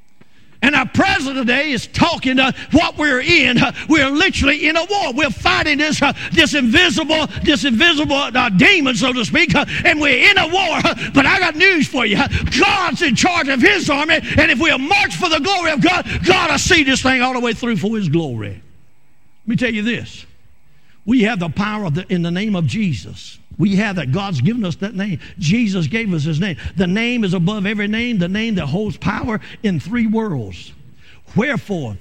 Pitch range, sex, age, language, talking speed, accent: 185-260 Hz, male, 50-69, English, 200 wpm, American